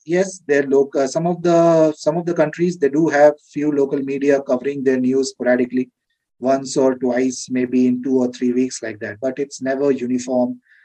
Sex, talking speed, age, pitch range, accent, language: male, 195 wpm, 30-49, 130-155 Hz, Indian, English